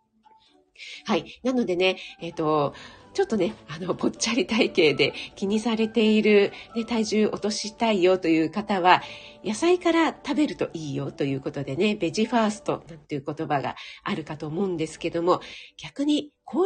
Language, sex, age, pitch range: Japanese, female, 40-59, 175-255 Hz